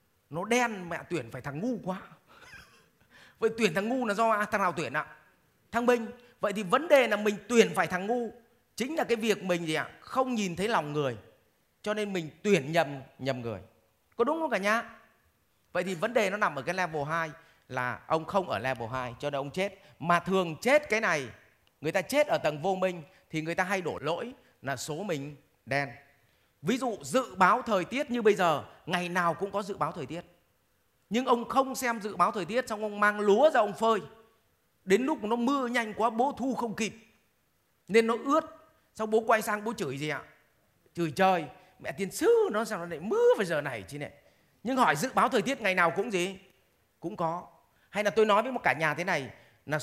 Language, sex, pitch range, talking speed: Vietnamese, male, 155-230 Hz, 225 wpm